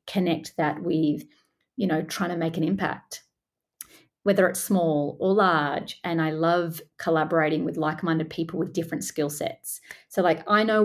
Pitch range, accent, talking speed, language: 160-190 Hz, Australian, 165 wpm, English